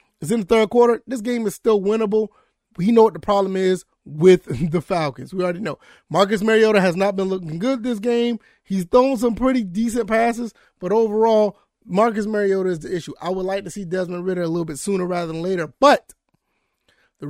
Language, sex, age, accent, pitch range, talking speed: English, male, 20-39, American, 195-240 Hz, 210 wpm